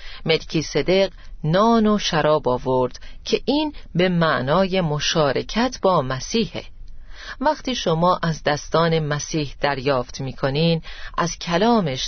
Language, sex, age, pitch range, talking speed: Persian, female, 40-59, 145-215 Hz, 110 wpm